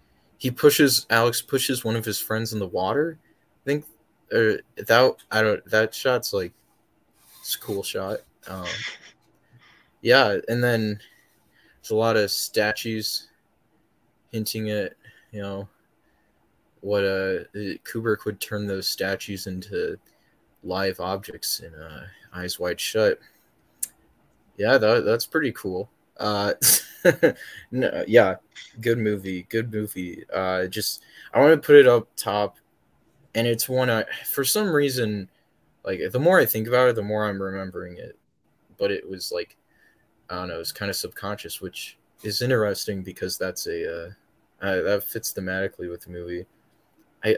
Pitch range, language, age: 100-135 Hz, English, 20-39